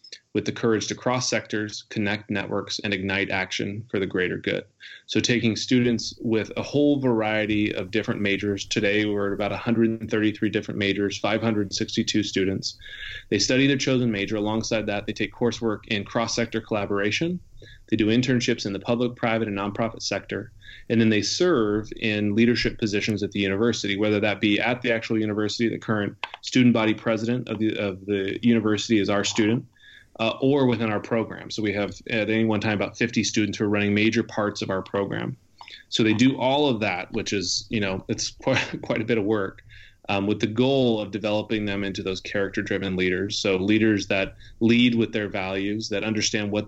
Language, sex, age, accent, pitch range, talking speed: English, male, 20-39, American, 100-115 Hz, 190 wpm